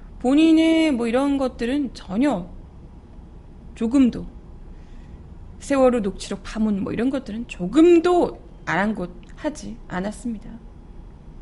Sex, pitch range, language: female, 185-250 Hz, Korean